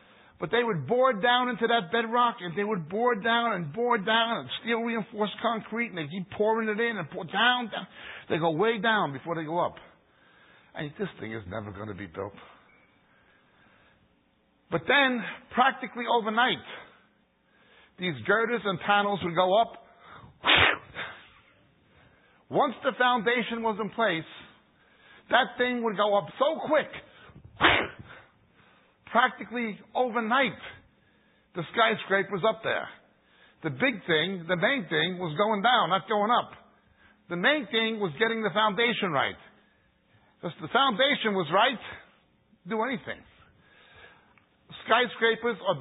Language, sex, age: English, male, 60-79